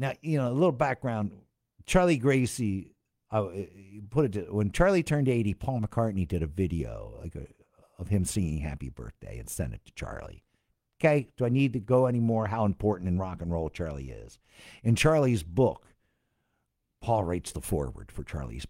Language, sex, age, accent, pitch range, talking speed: English, male, 60-79, American, 80-110 Hz, 190 wpm